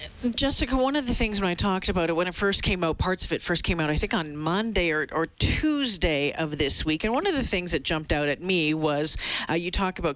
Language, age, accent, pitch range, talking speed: English, 40-59, American, 155-210 Hz, 270 wpm